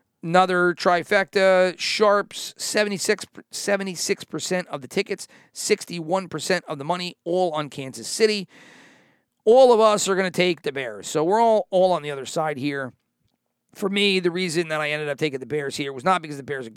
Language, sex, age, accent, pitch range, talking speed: English, male, 40-59, American, 140-180 Hz, 185 wpm